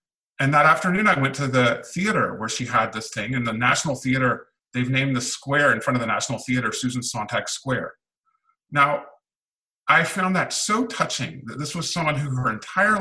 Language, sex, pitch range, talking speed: English, male, 125-160 Hz, 200 wpm